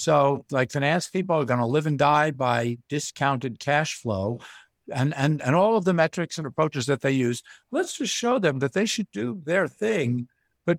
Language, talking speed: English, 205 wpm